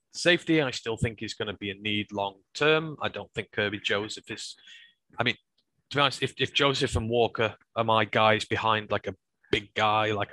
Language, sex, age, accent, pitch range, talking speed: English, male, 20-39, British, 105-120 Hz, 215 wpm